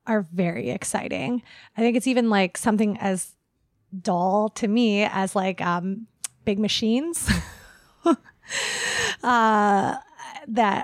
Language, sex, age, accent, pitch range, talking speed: English, female, 20-39, American, 200-250 Hz, 110 wpm